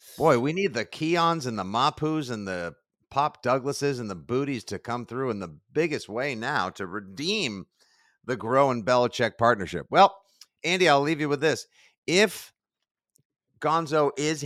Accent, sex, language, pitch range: American, male, English, 105-125 Hz